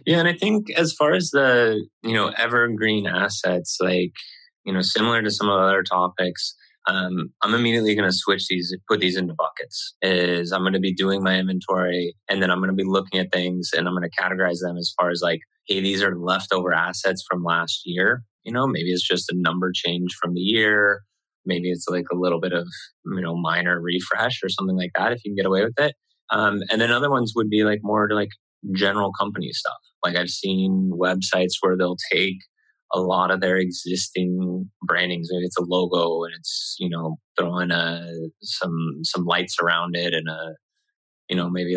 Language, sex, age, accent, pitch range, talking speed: English, male, 20-39, American, 90-105 Hz, 205 wpm